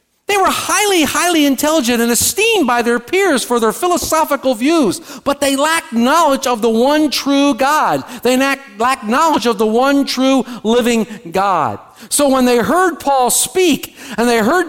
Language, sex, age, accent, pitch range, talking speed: English, male, 50-69, American, 230-295 Hz, 170 wpm